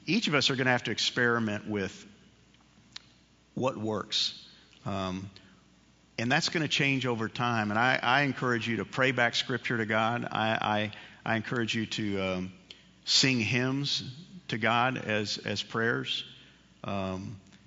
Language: English